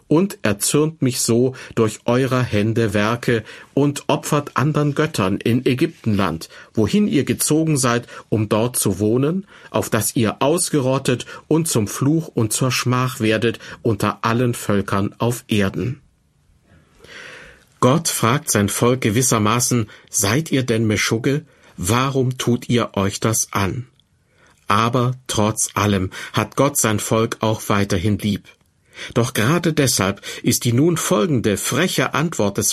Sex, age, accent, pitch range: male, 50-69, German, 105-130 Hz